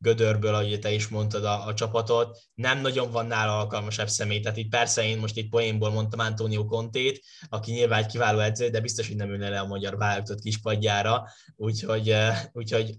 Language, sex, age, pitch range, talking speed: Hungarian, male, 10-29, 110-125 Hz, 190 wpm